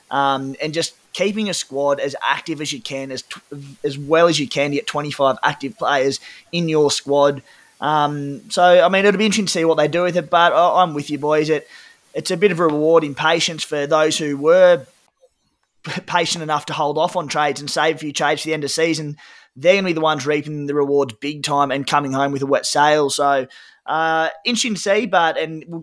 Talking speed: 230 wpm